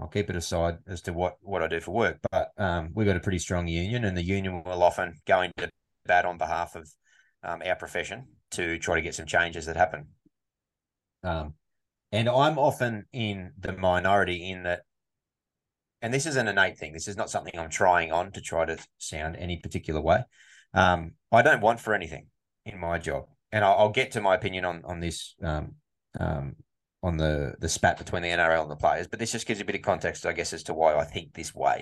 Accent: Australian